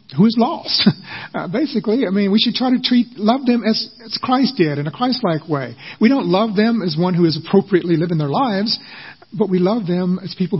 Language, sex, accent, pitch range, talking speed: English, male, American, 165-230 Hz, 225 wpm